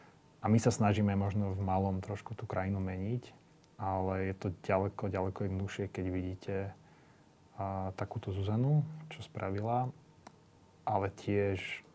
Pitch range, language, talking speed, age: 100-120 Hz, Slovak, 130 wpm, 30-49